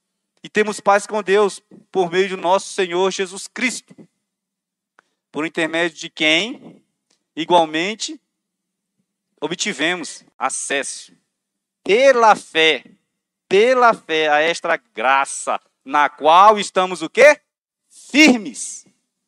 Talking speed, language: 100 wpm, Portuguese